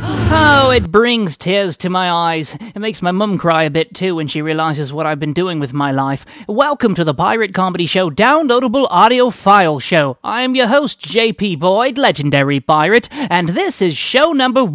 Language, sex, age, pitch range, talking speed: English, male, 30-49, 160-235 Hz, 190 wpm